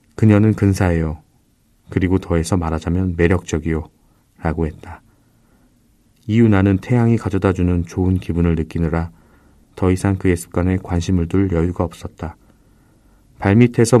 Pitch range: 85-100 Hz